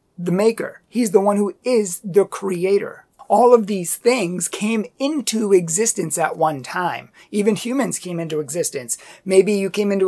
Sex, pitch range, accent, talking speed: male, 180-225 Hz, American, 165 wpm